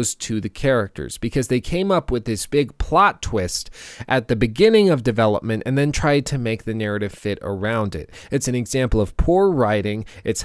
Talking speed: 195 wpm